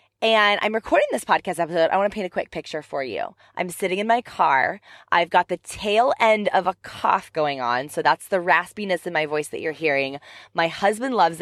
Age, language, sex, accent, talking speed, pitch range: 20-39, English, female, American, 225 wpm, 150-200 Hz